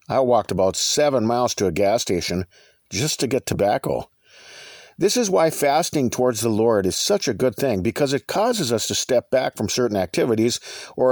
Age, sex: 50-69, male